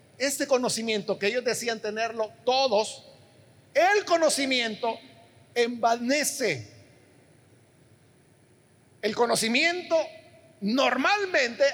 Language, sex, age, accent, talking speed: Spanish, male, 50-69, Mexican, 65 wpm